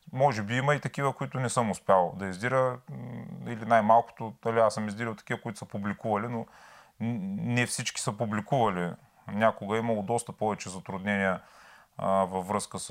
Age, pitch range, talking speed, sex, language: 30-49, 100-120 Hz, 165 wpm, male, Bulgarian